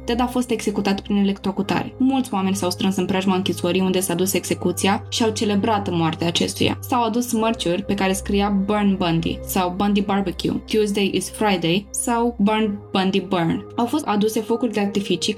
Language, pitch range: Romanian, 190-225 Hz